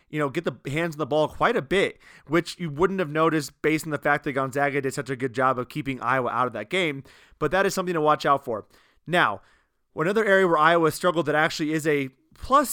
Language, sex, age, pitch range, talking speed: English, male, 30-49, 145-175 Hz, 250 wpm